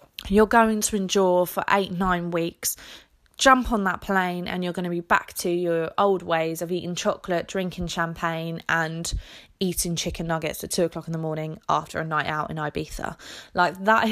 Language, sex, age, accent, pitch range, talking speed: English, female, 20-39, British, 170-210 Hz, 190 wpm